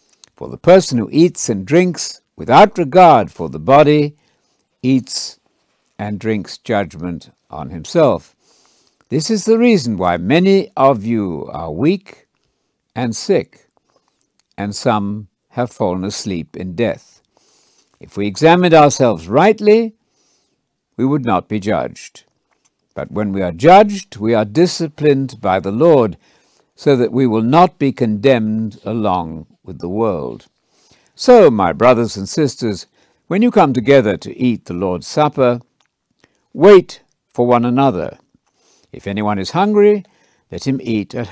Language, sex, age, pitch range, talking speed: English, male, 60-79, 105-155 Hz, 140 wpm